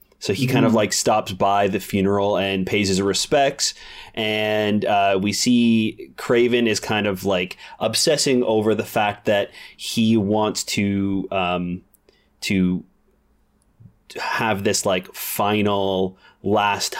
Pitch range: 95-110 Hz